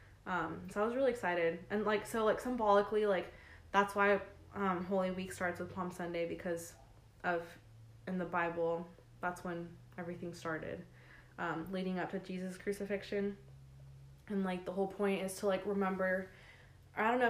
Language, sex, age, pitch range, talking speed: English, female, 20-39, 170-195 Hz, 165 wpm